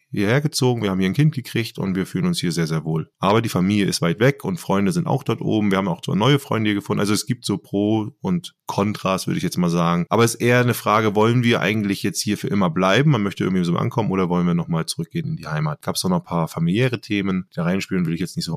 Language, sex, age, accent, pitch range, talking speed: German, male, 20-39, German, 95-135 Hz, 290 wpm